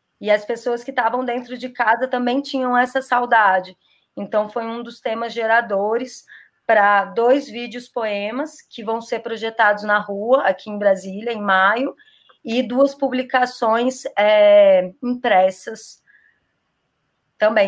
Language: Portuguese